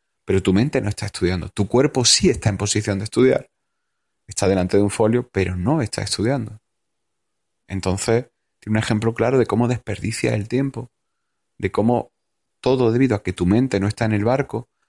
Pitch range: 100-125 Hz